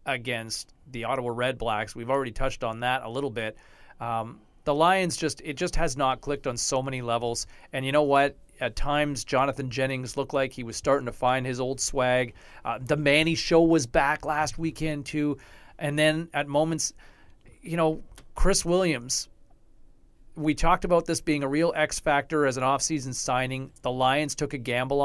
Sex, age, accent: male, 40-59, American